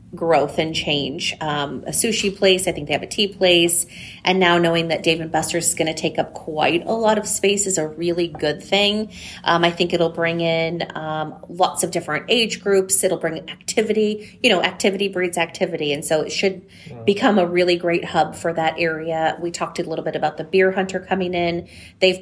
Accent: American